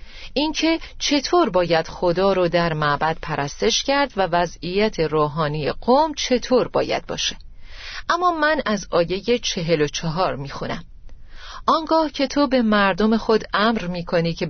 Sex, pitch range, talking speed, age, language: female, 170-225 Hz, 145 wpm, 40-59, Persian